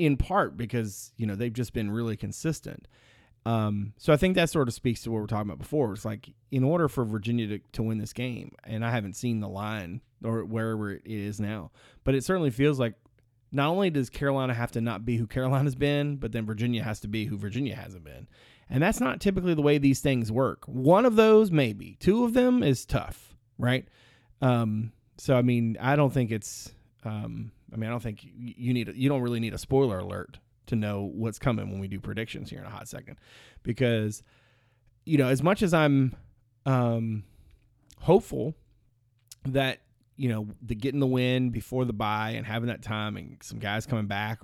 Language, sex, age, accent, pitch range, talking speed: English, male, 30-49, American, 110-135 Hz, 210 wpm